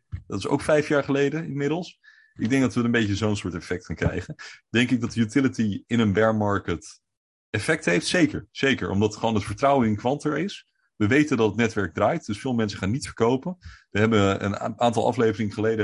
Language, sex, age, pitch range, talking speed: English, male, 30-49, 100-130 Hz, 210 wpm